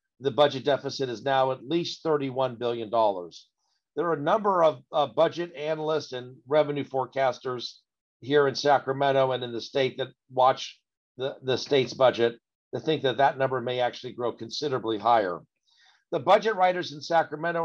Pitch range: 125-150 Hz